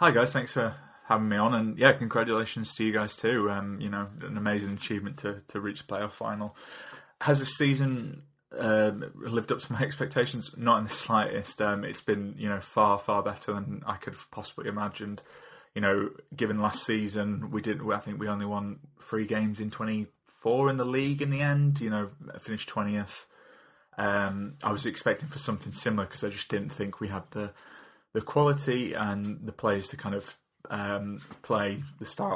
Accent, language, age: British, English, 20-39